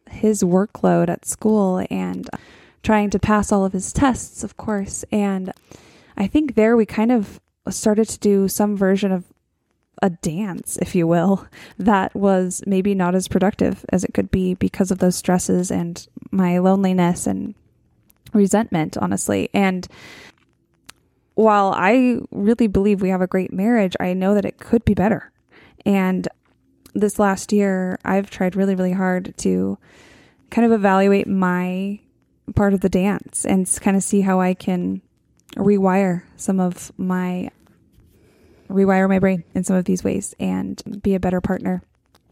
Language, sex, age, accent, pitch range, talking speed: English, female, 10-29, American, 185-210 Hz, 155 wpm